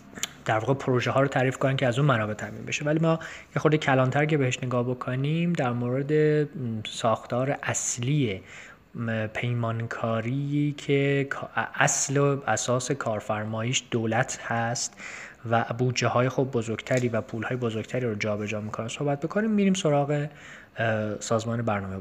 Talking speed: 145 wpm